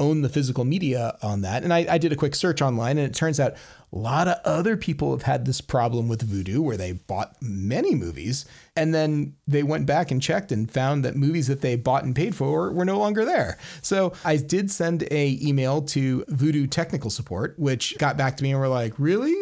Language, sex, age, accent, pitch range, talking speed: English, male, 30-49, American, 125-165 Hz, 230 wpm